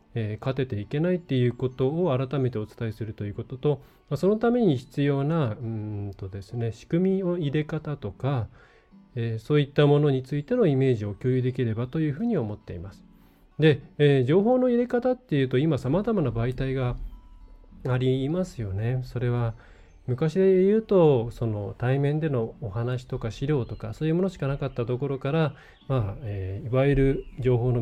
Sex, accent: male, native